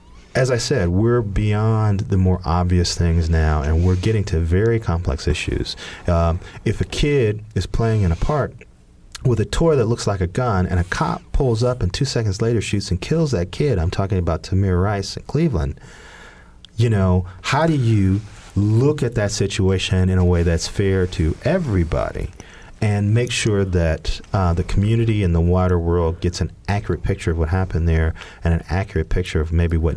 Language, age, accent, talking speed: English, 40-59, American, 195 wpm